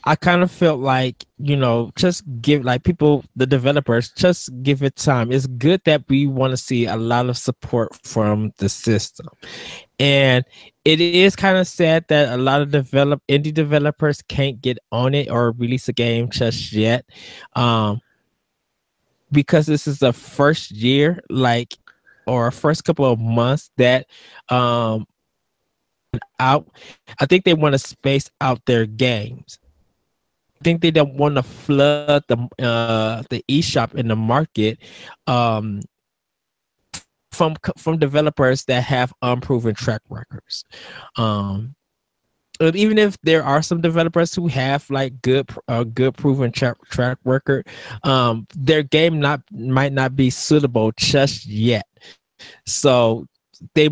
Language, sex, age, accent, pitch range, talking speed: English, male, 20-39, American, 120-150 Hz, 145 wpm